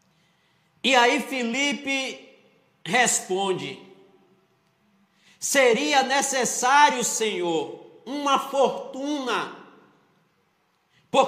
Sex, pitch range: male, 235-275 Hz